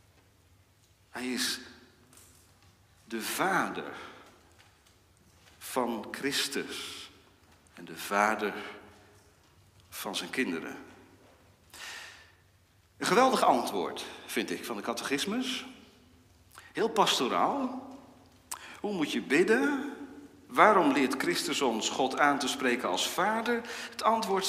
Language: Dutch